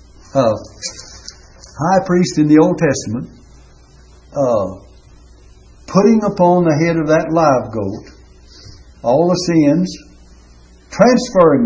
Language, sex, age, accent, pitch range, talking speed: English, male, 60-79, American, 100-165 Hz, 105 wpm